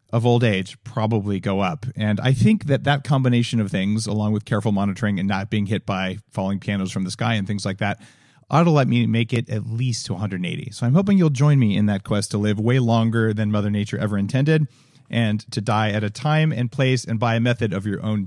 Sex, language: male, English